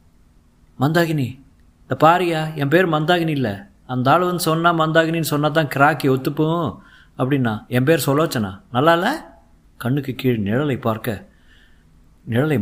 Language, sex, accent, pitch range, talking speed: Tamil, male, native, 95-165 Hz, 130 wpm